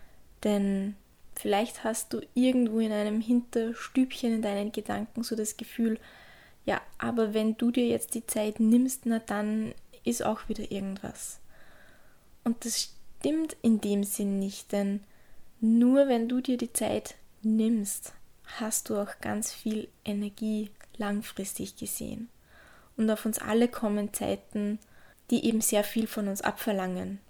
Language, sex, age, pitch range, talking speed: German, female, 20-39, 205-235 Hz, 145 wpm